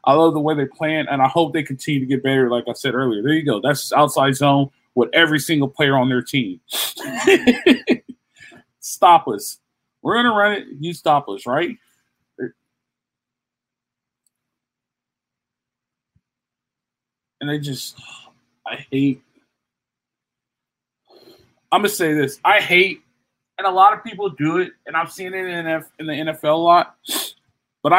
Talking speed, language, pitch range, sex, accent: 150 wpm, English, 140-195 Hz, male, American